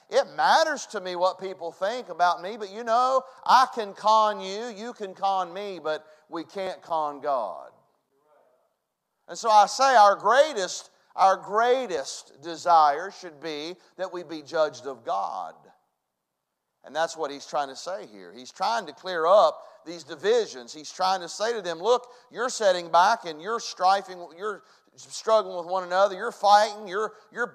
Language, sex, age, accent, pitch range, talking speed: English, male, 40-59, American, 190-255 Hz, 170 wpm